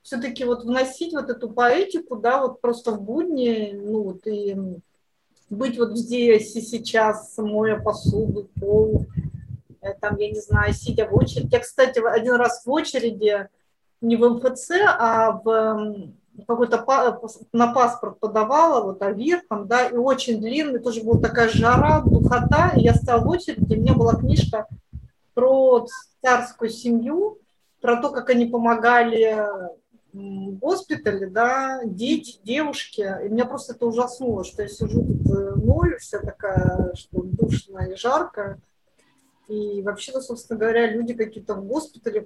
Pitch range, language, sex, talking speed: 215-260 Hz, Russian, female, 150 wpm